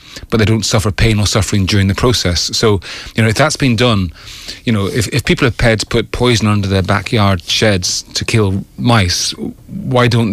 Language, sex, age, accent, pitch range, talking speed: English, male, 30-49, British, 95-115 Hz, 210 wpm